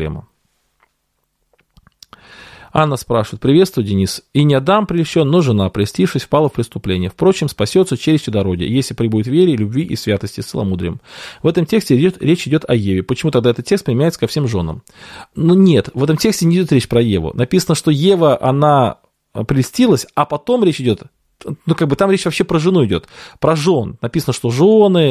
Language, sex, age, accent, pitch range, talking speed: Russian, male, 20-39, native, 115-180 Hz, 180 wpm